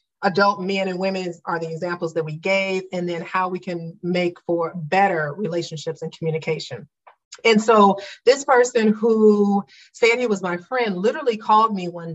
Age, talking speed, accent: 30-49, 170 wpm, American